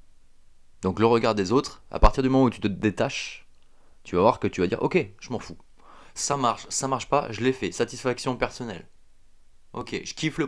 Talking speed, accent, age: 220 wpm, French, 20-39